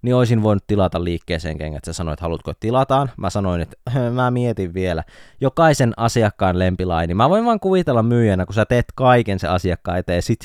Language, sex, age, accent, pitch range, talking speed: Finnish, male, 20-39, native, 90-125 Hz, 185 wpm